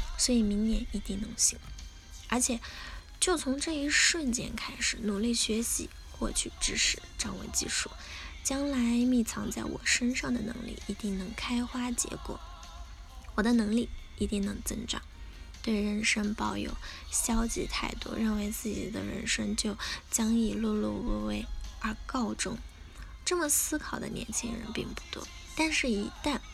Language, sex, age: Chinese, female, 10-29